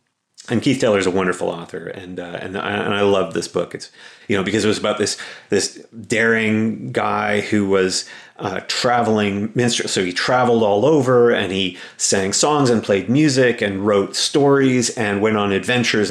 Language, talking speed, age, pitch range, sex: English, 185 wpm, 30-49, 95-110 Hz, male